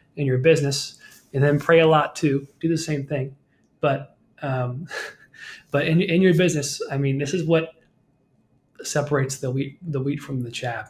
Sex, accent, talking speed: male, American, 180 wpm